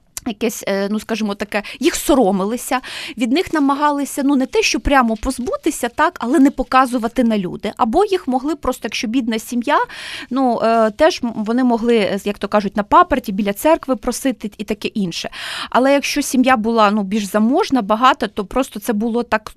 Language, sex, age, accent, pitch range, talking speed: Ukrainian, female, 20-39, native, 215-265 Hz, 170 wpm